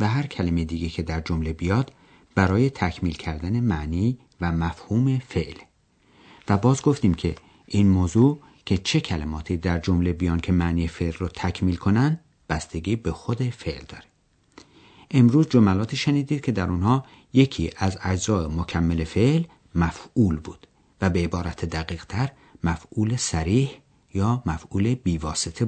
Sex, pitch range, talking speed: male, 85-120 Hz, 140 wpm